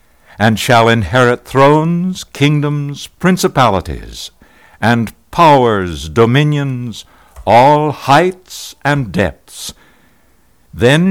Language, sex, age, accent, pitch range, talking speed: English, male, 60-79, American, 100-145 Hz, 75 wpm